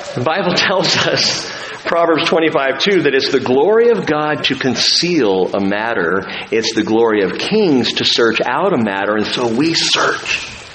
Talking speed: 165 wpm